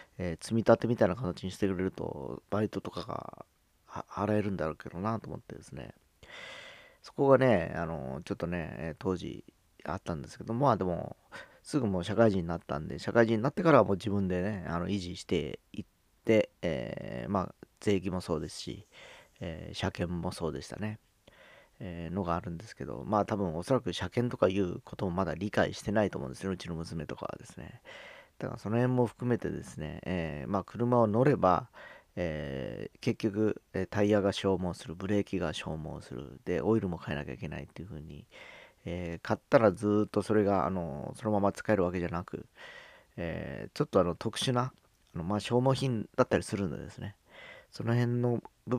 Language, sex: Japanese, male